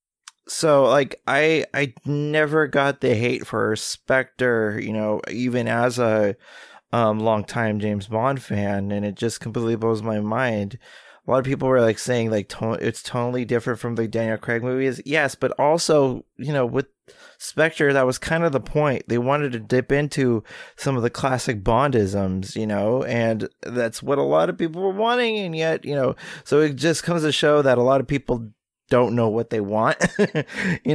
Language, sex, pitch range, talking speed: English, male, 110-140 Hz, 195 wpm